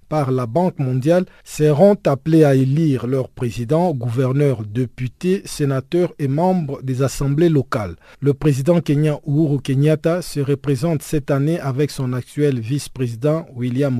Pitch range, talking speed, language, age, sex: 135-170 Hz, 135 wpm, French, 50-69, male